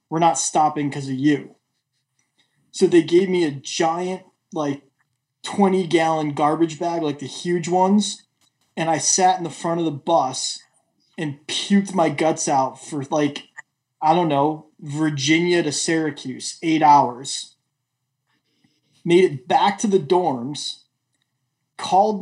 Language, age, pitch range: English, 20-39, 135-175 Hz